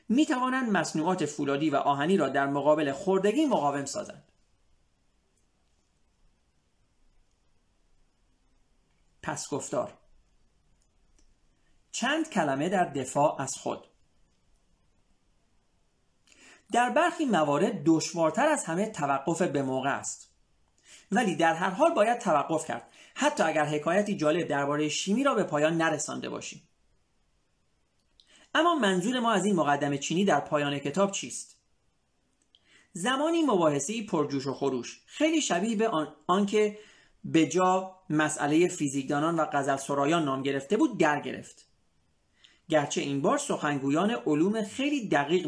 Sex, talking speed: male, 110 wpm